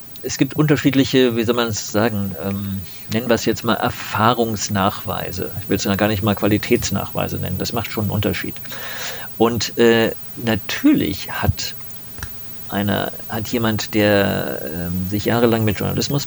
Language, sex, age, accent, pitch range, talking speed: German, male, 50-69, German, 105-130 Hz, 150 wpm